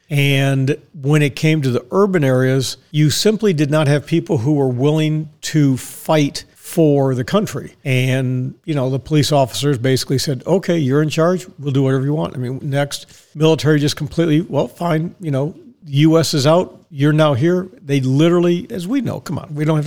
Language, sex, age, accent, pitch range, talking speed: English, male, 50-69, American, 135-160 Hz, 195 wpm